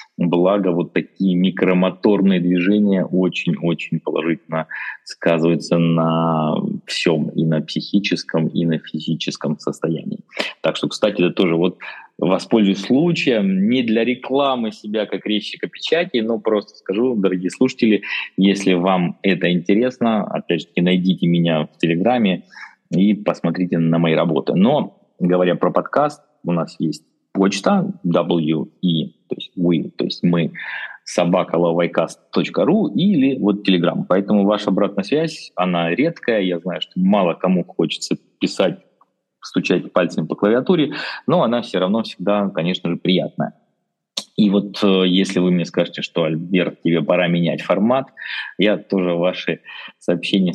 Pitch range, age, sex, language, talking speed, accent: 85-110 Hz, 20-39, male, Russian, 135 wpm, native